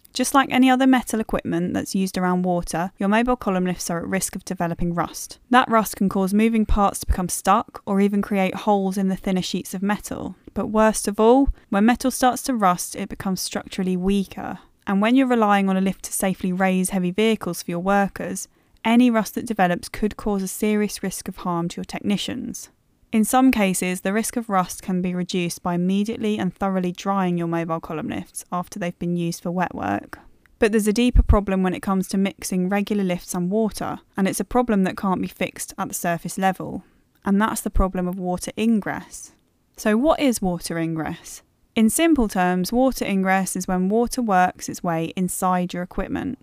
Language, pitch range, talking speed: English, 180-220 Hz, 205 wpm